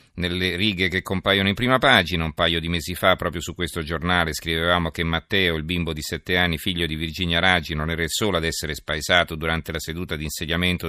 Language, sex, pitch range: Italian, male, 80-90 Hz